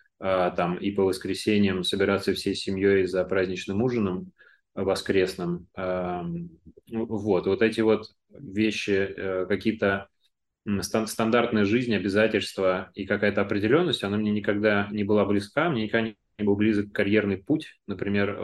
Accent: native